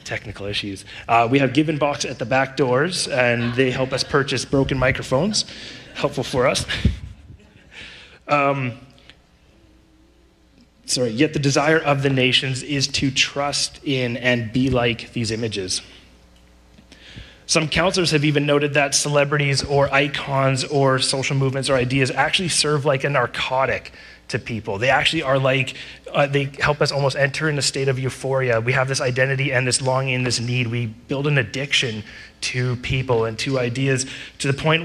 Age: 30-49